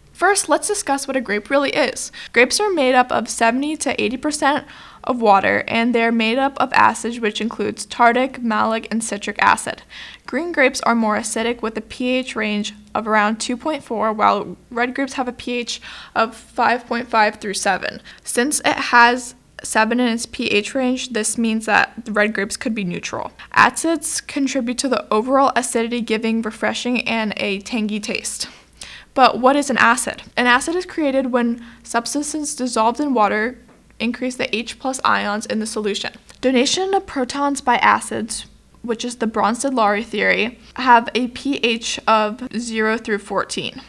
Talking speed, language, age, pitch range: 165 wpm, English, 10-29, 220-260 Hz